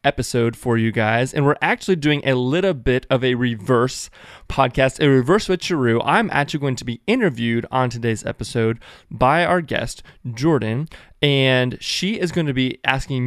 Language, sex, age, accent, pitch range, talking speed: English, male, 20-39, American, 125-160 Hz, 175 wpm